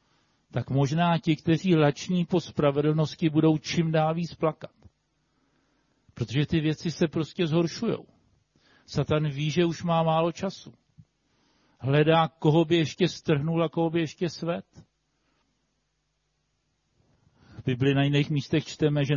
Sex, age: male, 50-69